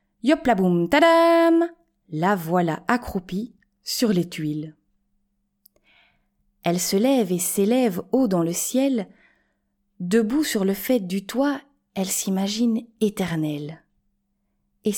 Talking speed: 110 wpm